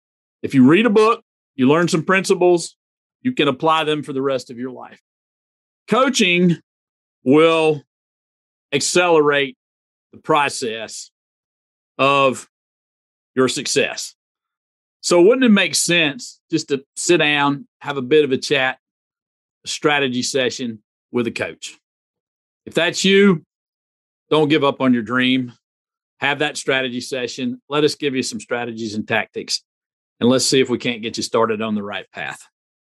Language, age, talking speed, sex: English, 40-59, 150 wpm, male